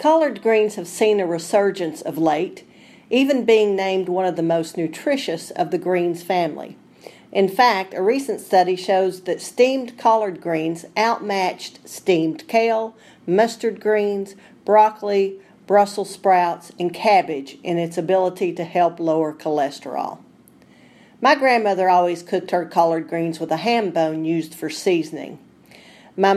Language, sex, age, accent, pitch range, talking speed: English, female, 40-59, American, 170-215 Hz, 140 wpm